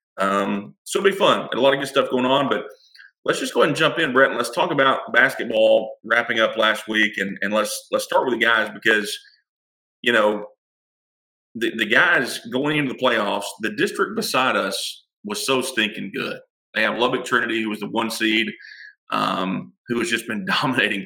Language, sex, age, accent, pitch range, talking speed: English, male, 40-59, American, 105-130 Hz, 205 wpm